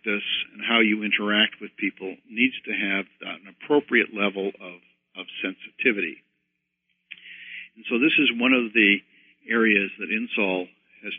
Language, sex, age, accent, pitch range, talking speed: English, male, 50-69, American, 95-115 Hz, 130 wpm